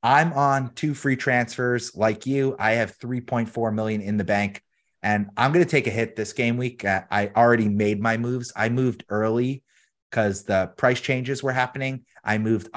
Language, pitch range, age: English, 105-130 Hz, 30-49